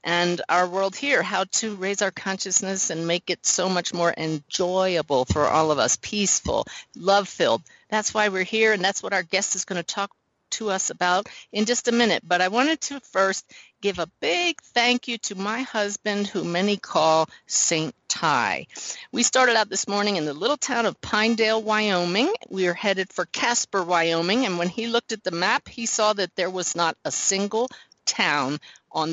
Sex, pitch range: female, 190-245 Hz